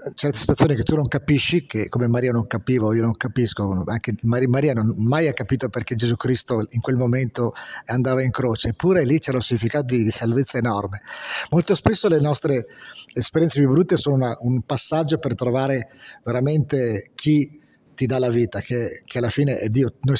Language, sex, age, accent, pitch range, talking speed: Italian, male, 40-59, native, 115-140 Hz, 190 wpm